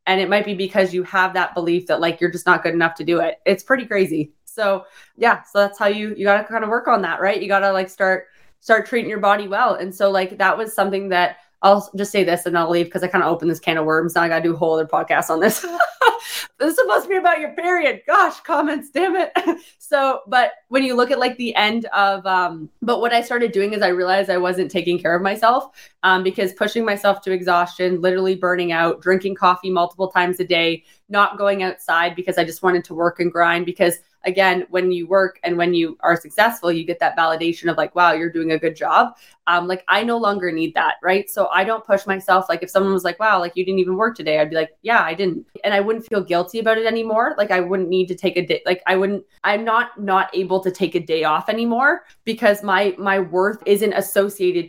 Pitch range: 175-210 Hz